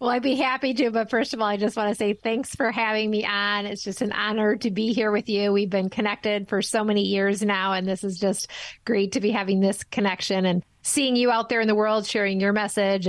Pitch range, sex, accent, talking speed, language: 210-275 Hz, female, American, 260 wpm, English